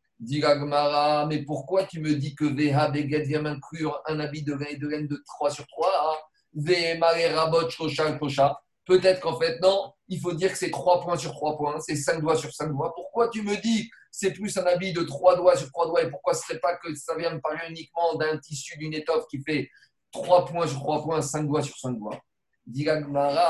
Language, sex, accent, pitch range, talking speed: French, male, French, 145-180 Hz, 220 wpm